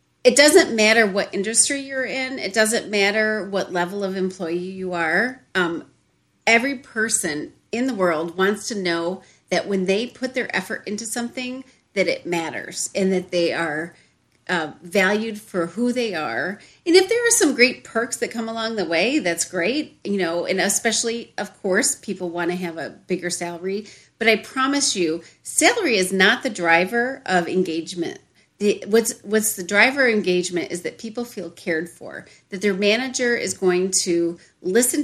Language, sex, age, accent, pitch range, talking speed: English, female, 40-59, American, 180-240 Hz, 175 wpm